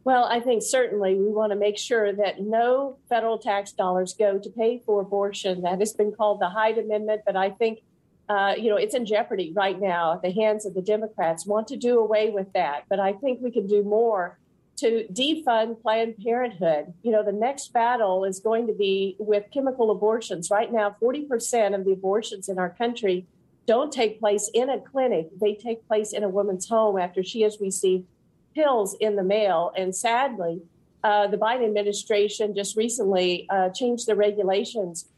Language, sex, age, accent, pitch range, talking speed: English, female, 50-69, American, 200-230 Hz, 195 wpm